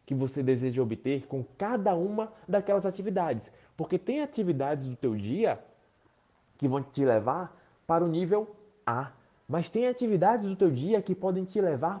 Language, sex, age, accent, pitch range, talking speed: Portuguese, male, 20-39, Brazilian, 130-190 Hz, 165 wpm